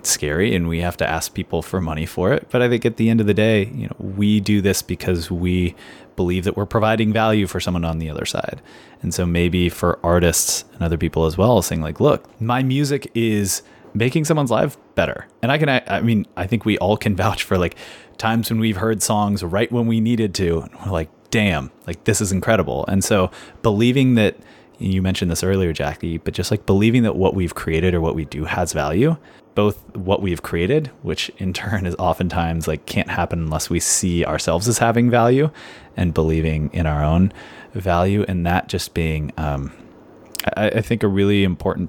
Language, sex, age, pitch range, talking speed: English, male, 30-49, 85-110 Hz, 210 wpm